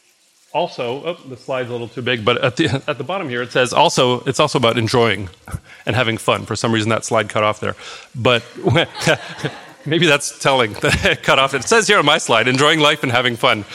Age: 40-59